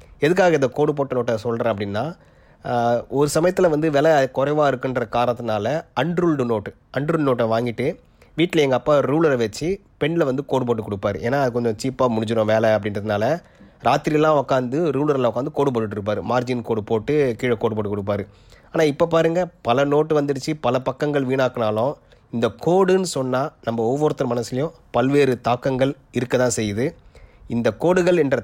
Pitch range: 115-140 Hz